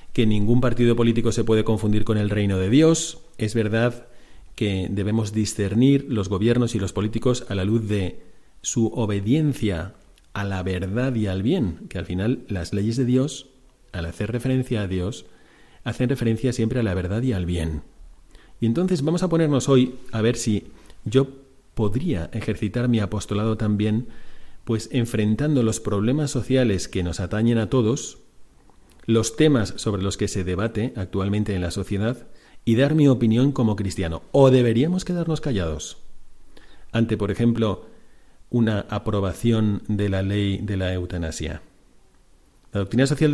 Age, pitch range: 40-59, 100-125 Hz